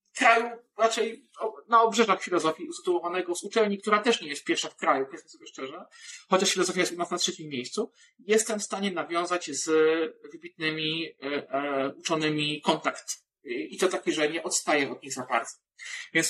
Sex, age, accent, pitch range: male, 40-59, native, 145-190 Hz